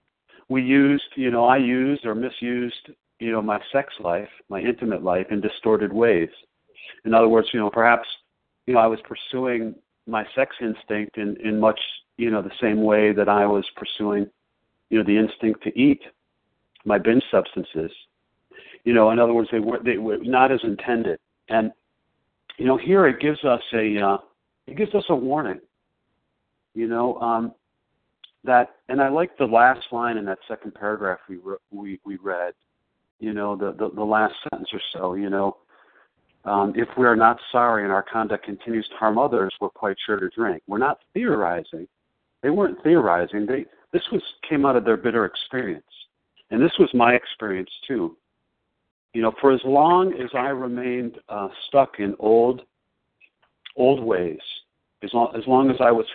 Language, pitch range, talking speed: English, 105-125 Hz, 180 wpm